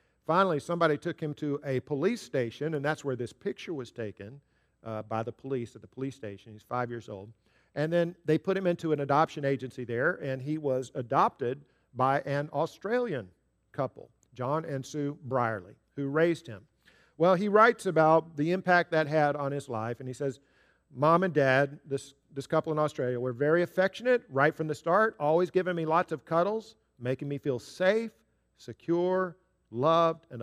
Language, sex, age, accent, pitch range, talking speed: English, male, 50-69, American, 125-175 Hz, 185 wpm